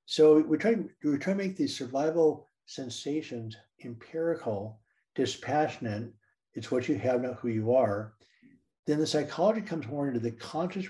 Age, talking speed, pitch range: 60-79, 155 wpm, 115-145 Hz